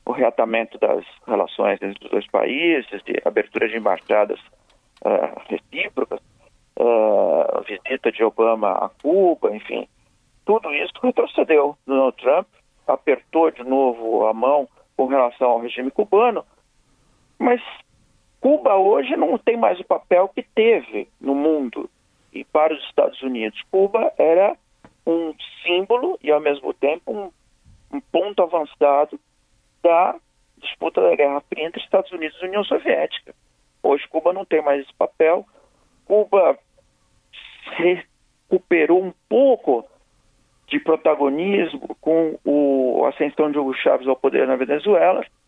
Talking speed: 130 wpm